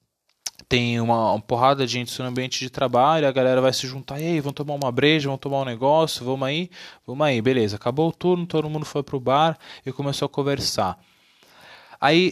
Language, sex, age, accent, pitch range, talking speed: Portuguese, male, 20-39, Brazilian, 120-155 Hz, 200 wpm